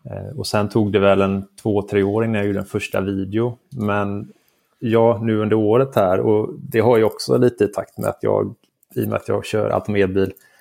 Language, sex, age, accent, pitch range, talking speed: Swedish, male, 20-39, Norwegian, 100-115 Hz, 215 wpm